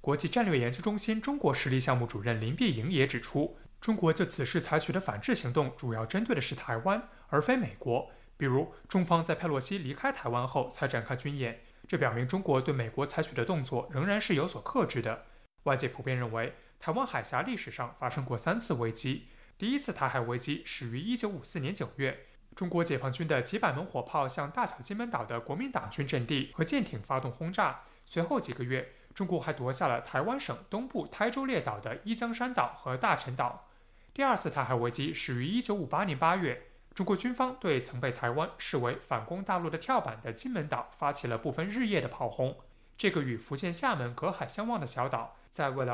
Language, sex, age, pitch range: Chinese, male, 20-39, 125-190 Hz